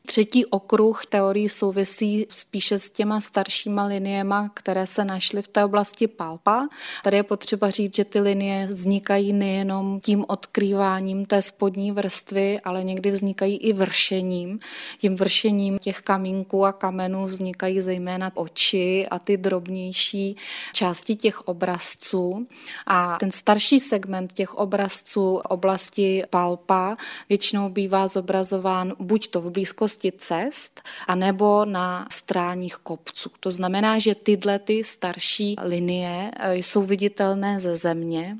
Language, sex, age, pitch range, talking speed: Czech, female, 20-39, 185-205 Hz, 130 wpm